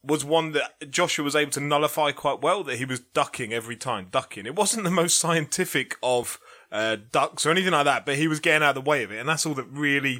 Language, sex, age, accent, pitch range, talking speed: English, male, 30-49, British, 125-160 Hz, 260 wpm